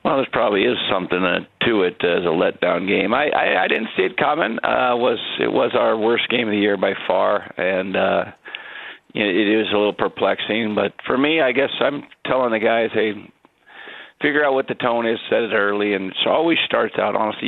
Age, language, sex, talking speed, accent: 50-69, English, male, 215 wpm, American